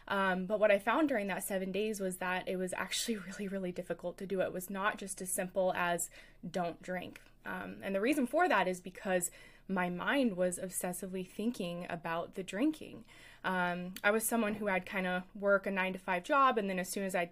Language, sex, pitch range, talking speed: English, female, 175-200 Hz, 220 wpm